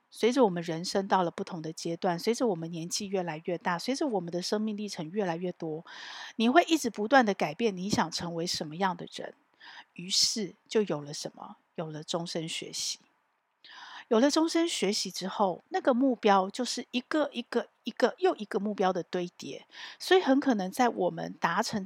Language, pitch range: Chinese, 175-245 Hz